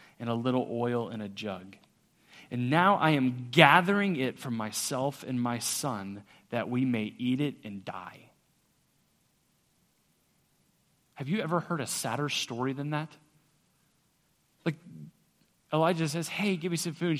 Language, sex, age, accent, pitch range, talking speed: English, male, 30-49, American, 125-170 Hz, 145 wpm